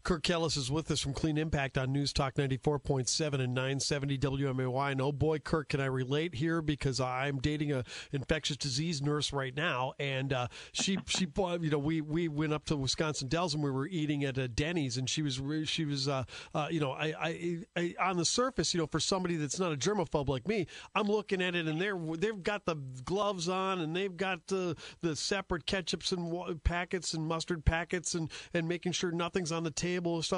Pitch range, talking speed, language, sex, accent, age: 145-180 Hz, 225 wpm, English, male, American, 40-59